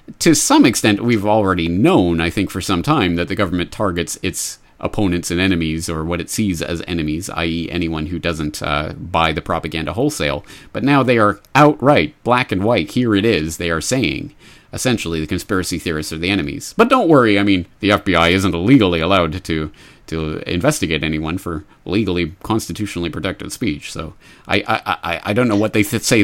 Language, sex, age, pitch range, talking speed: English, male, 30-49, 85-120 Hz, 195 wpm